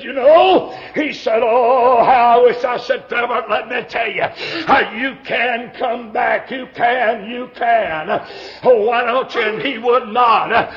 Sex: male